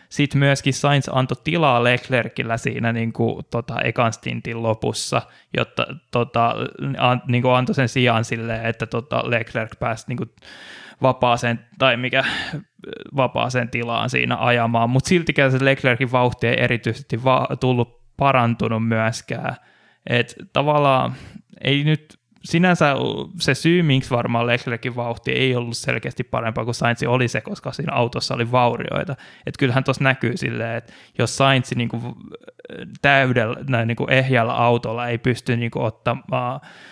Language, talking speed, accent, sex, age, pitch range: Finnish, 145 wpm, native, male, 10-29, 115-135 Hz